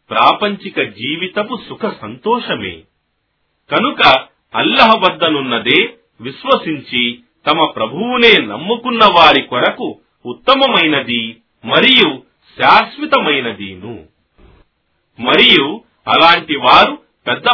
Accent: native